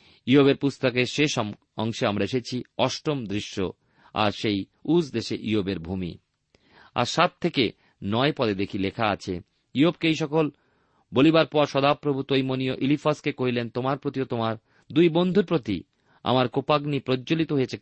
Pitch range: 110-140 Hz